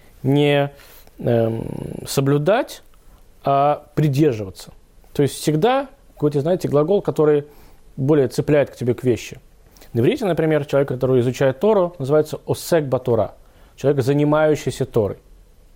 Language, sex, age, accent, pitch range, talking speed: Russian, male, 20-39, native, 120-160 Hz, 115 wpm